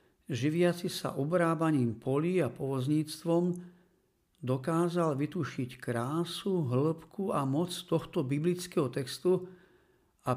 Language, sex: Slovak, male